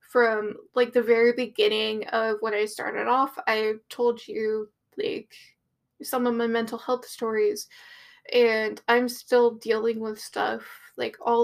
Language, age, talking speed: English, 10-29, 145 wpm